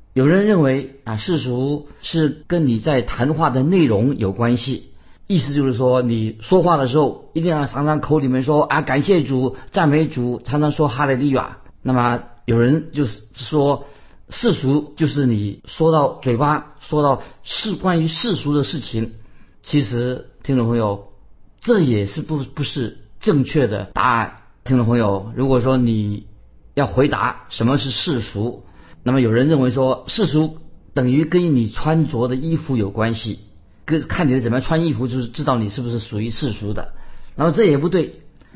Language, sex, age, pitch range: Chinese, male, 50-69, 120-155 Hz